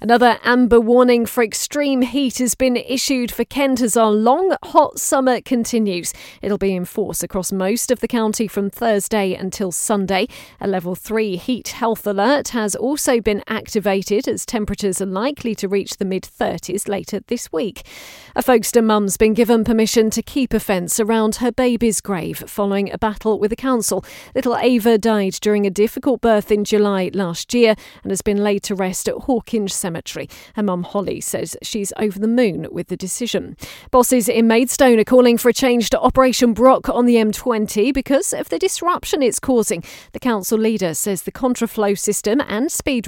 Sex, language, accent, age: female, English, British, 40-59